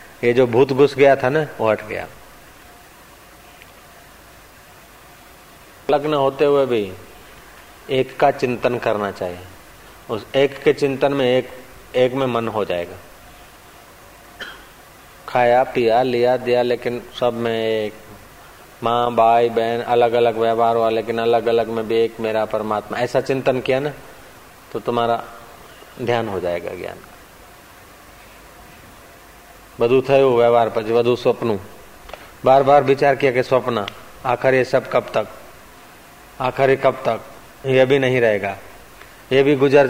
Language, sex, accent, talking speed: Hindi, male, native, 130 wpm